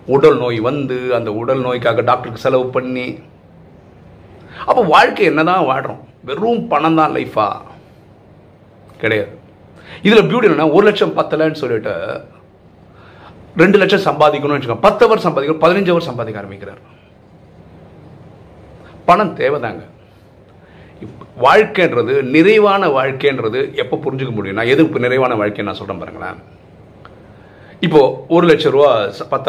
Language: Tamil